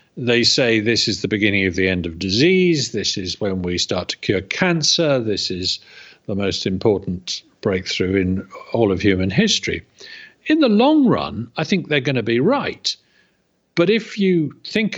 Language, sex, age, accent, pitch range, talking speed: English, male, 50-69, British, 115-190 Hz, 180 wpm